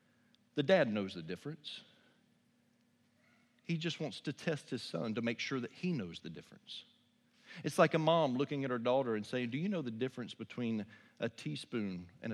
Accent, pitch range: American, 110-145 Hz